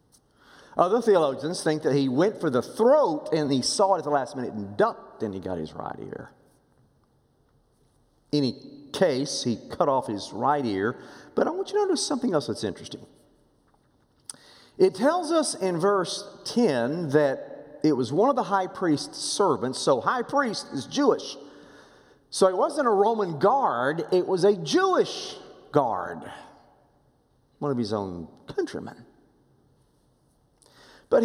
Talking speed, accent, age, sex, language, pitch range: 155 wpm, American, 40-59, male, English, 130-200 Hz